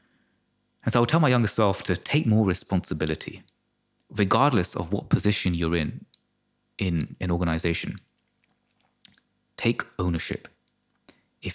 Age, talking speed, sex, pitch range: 30-49, 125 wpm, male, 90-115 Hz